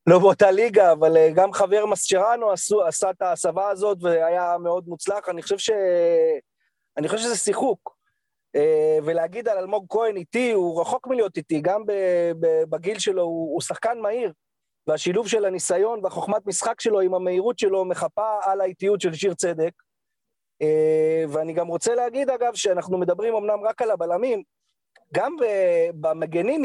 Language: Hebrew